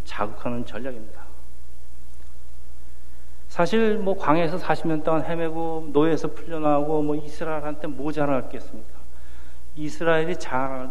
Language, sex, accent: Korean, male, native